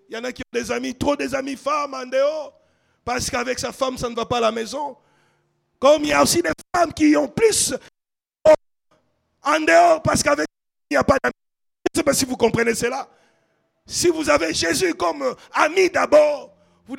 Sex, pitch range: male, 245-300 Hz